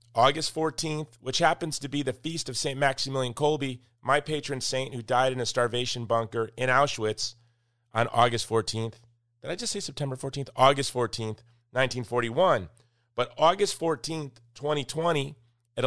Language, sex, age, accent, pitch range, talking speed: English, male, 30-49, American, 115-145 Hz, 150 wpm